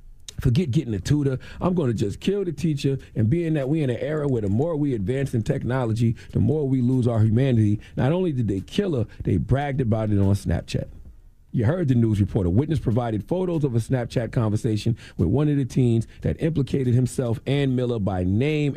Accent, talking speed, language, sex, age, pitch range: American, 215 wpm, English, male, 40-59, 105-135 Hz